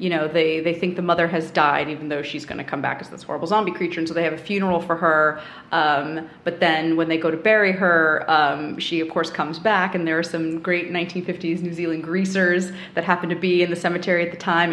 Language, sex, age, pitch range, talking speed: English, female, 30-49, 165-200 Hz, 255 wpm